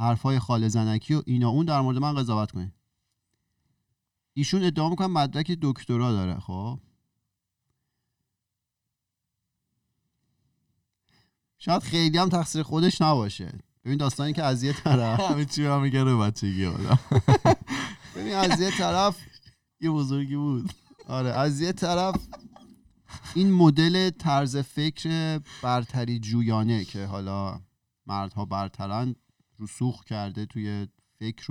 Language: Persian